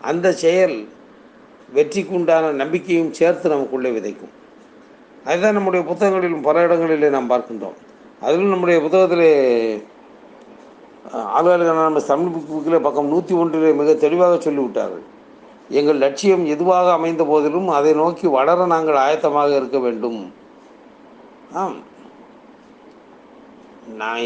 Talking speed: 100 wpm